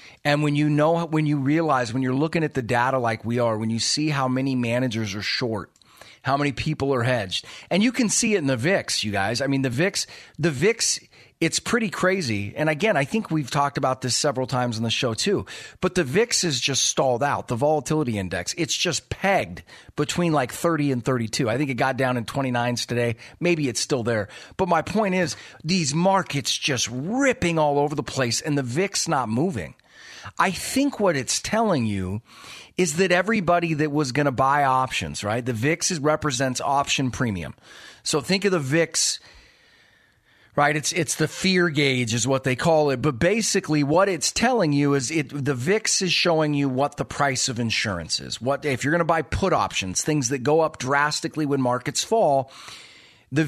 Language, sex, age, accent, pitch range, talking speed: English, male, 40-59, American, 125-165 Hz, 205 wpm